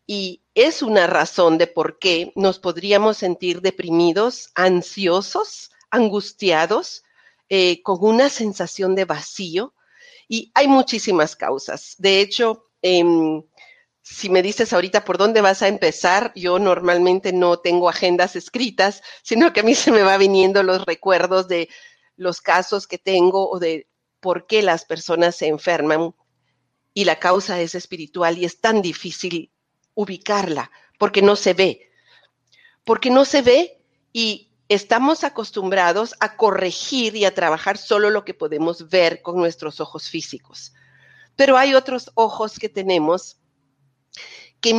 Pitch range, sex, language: 175-215 Hz, female, Spanish